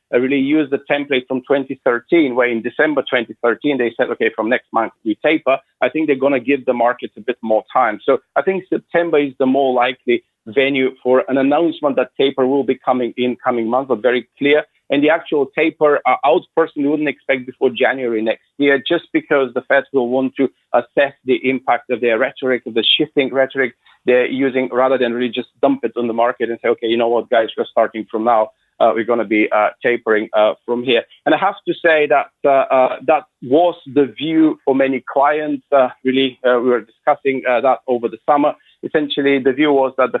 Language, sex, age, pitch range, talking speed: English, male, 40-59, 125-145 Hz, 220 wpm